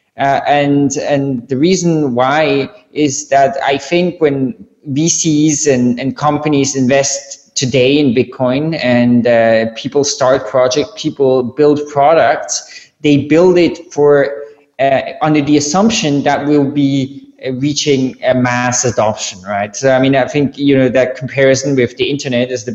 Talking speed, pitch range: 155 wpm, 125-145 Hz